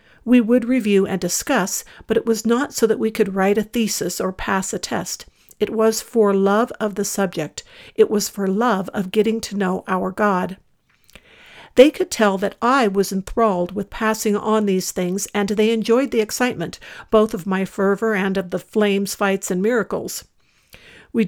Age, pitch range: 50-69, 190-225 Hz